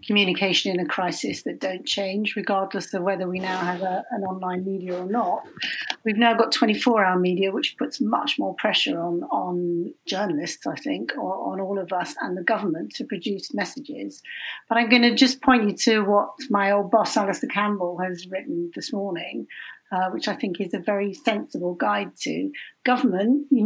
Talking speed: 190 wpm